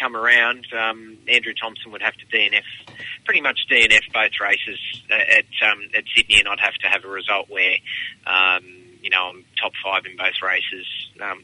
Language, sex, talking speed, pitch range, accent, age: English, male, 195 wpm, 110-125 Hz, Australian, 20-39